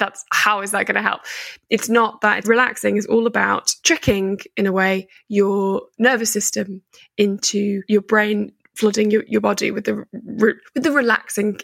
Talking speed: 165 wpm